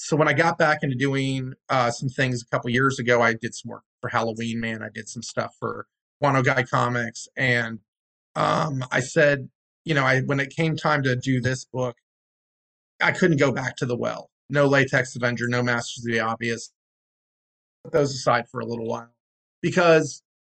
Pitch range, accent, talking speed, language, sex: 125-150 Hz, American, 195 wpm, English, male